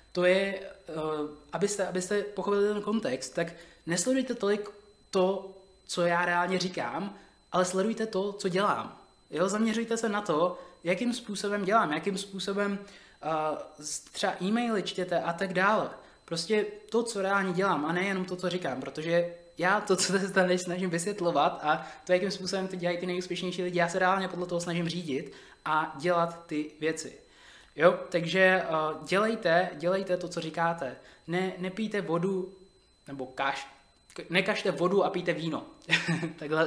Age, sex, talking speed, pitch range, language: 20-39, male, 155 wpm, 165-195 Hz, Czech